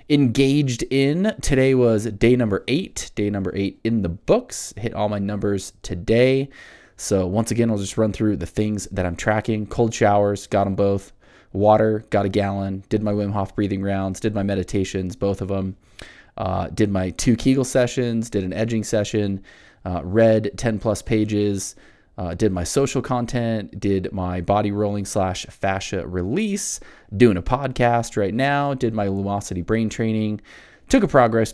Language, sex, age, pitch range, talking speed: English, male, 20-39, 100-115 Hz, 175 wpm